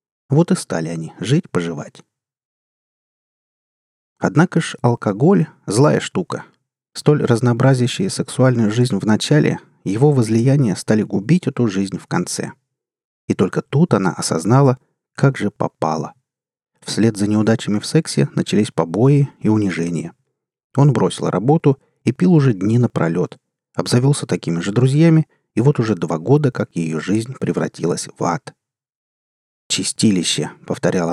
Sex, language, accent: male, Russian, native